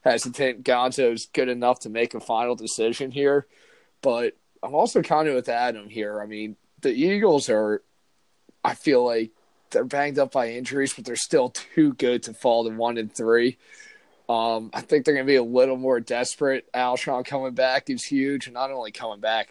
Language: English